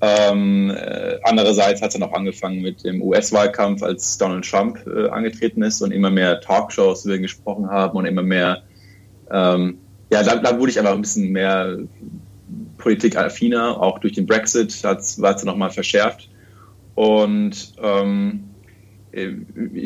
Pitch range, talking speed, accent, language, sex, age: 100-125 Hz, 145 wpm, German, German, male, 20-39